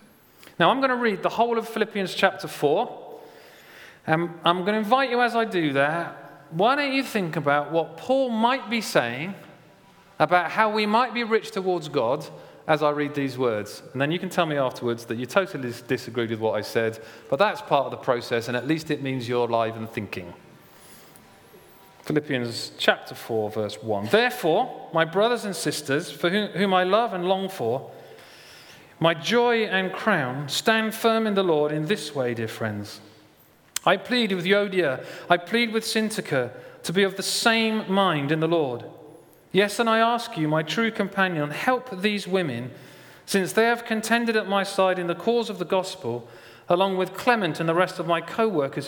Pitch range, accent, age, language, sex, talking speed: 145-210 Hz, British, 40-59, English, male, 190 wpm